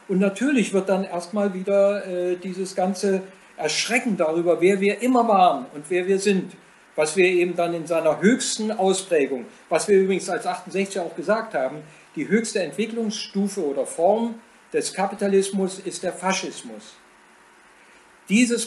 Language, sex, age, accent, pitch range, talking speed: German, male, 50-69, German, 175-215 Hz, 150 wpm